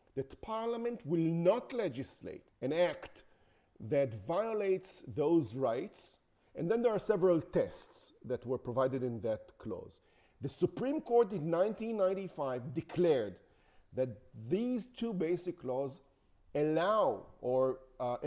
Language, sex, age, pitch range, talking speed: English, male, 40-59, 130-190 Hz, 120 wpm